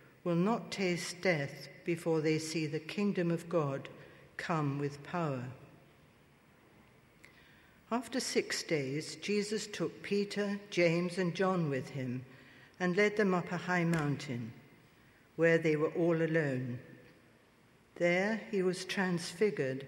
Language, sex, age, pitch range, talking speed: English, female, 60-79, 145-185 Hz, 125 wpm